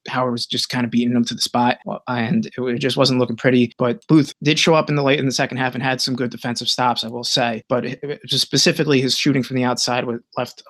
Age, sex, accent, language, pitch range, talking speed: 20-39, male, American, English, 125-155 Hz, 265 wpm